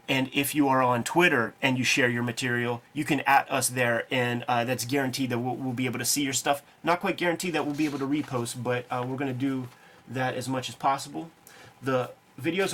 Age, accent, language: 30-49, American, English